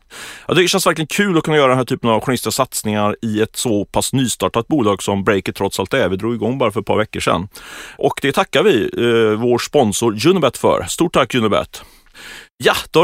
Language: Swedish